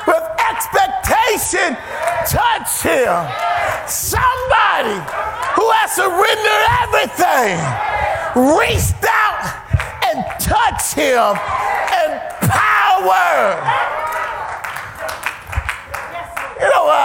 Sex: male